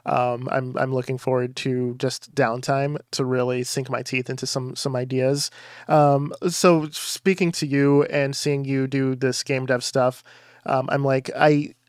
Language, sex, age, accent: English, male, 20-39, American